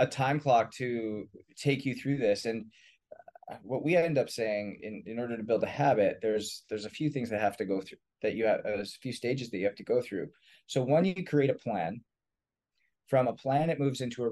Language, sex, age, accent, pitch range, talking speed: English, male, 20-39, American, 115-145 Hz, 235 wpm